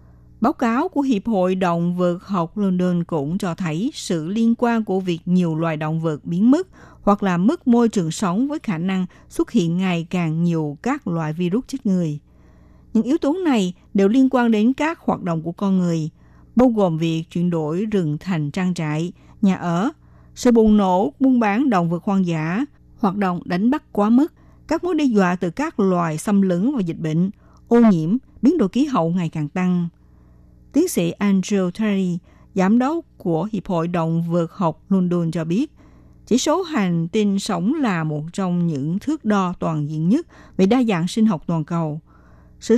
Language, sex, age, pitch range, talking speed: Vietnamese, female, 60-79, 170-225 Hz, 195 wpm